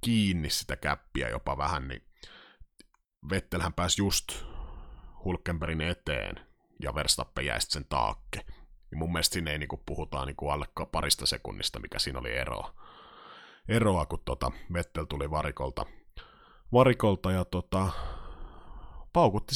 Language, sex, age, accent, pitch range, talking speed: Finnish, male, 30-49, native, 80-105 Hz, 130 wpm